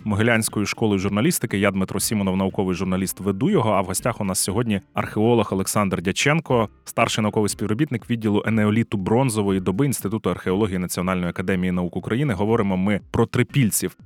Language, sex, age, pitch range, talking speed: Ukrainian, male, 30-49, 100-130 Hz, 155 wpm